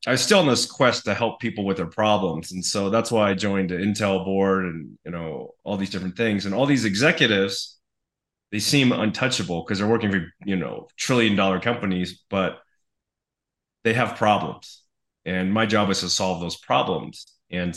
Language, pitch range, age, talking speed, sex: English, 95-115 Hz, 30-49, 190 wpm, male